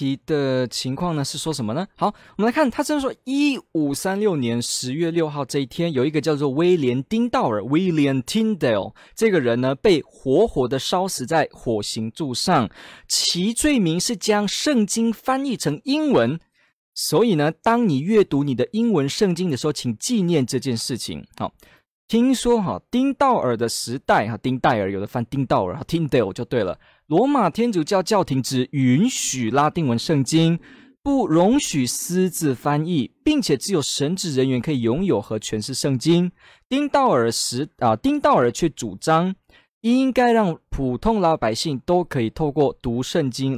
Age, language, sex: 20-39, Chinese, male